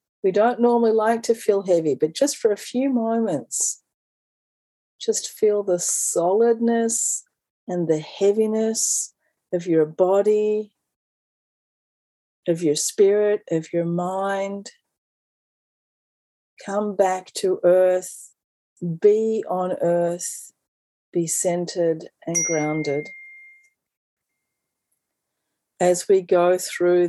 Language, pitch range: English, 170-210 Hz